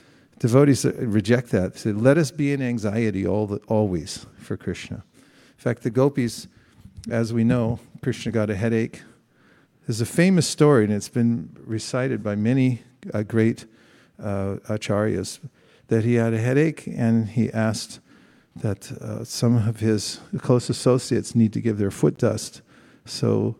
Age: 50-69